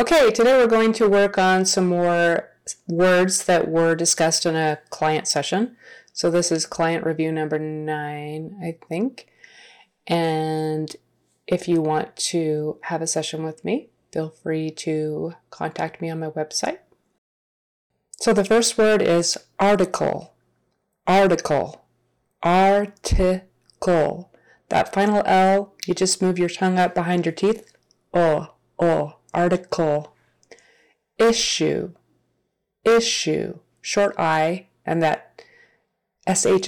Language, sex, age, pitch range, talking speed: English, female, 30-49, 155-200 Hz, 120 wpm